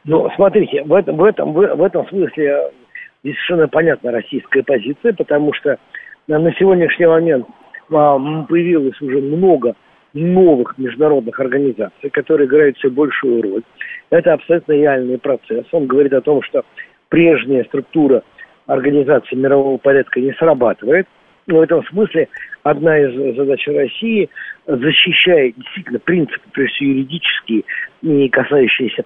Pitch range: 140-190 Hz